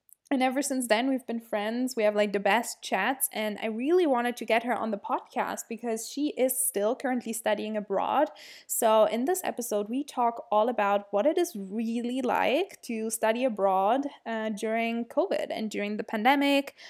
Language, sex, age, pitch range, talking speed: English, female, 10-29, 210-265 Hz, 190 wpm